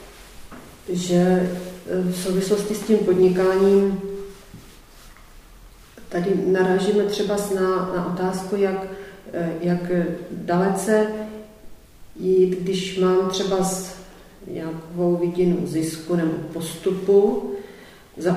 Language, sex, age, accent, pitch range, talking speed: Czech, female, 40-59, native, 180-205 Hz, 80 wpm